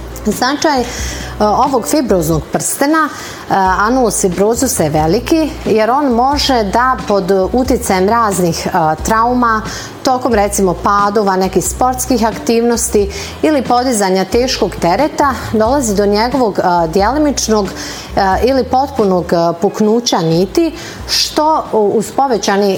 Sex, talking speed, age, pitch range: female, 100 wpm, 40-59, 190-250 Hz